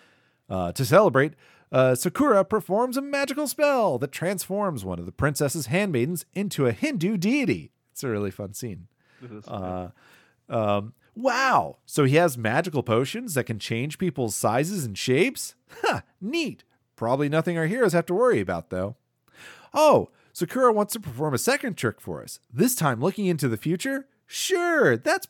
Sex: male